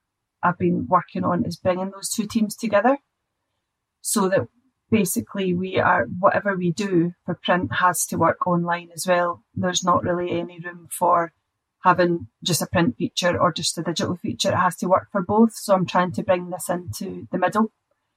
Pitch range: 175-200 Hz